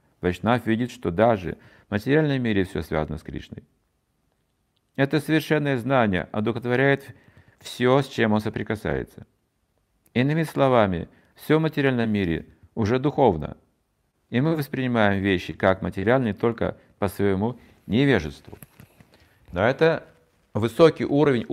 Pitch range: 100-145 Hz